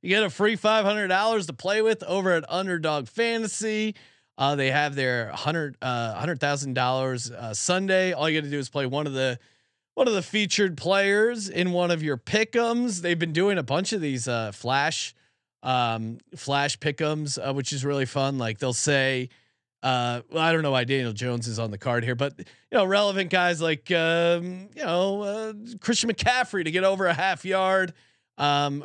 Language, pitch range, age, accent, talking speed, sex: English, 130-185 Hz, 30-49, American, 200 wpm, male